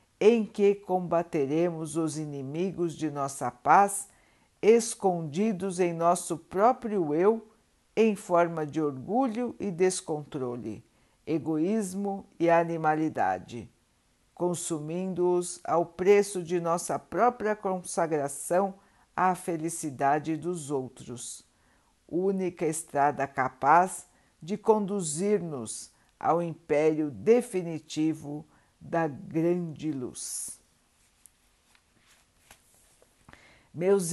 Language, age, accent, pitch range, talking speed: Portuguese, 60-79, Brazilian, 155-195 Hz, 80 wpm